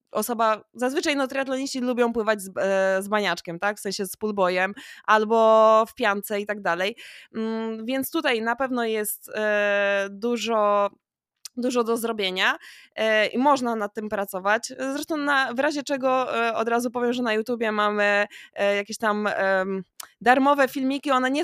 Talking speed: 145 wpm